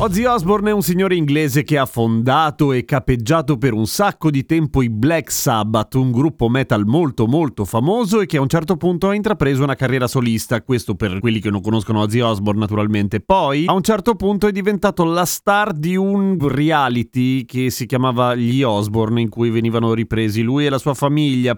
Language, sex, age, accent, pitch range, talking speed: Italian, male, 30-49, native, 120-175 Hz, 195 wpm